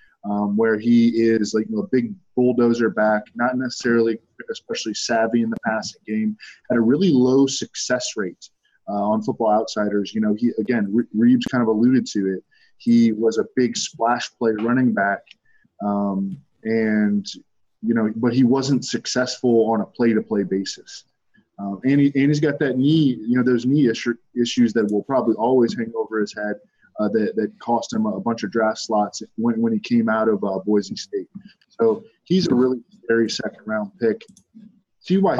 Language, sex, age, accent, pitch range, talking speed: English, male, 20-39, American, 105-125 Hz, 180 wpm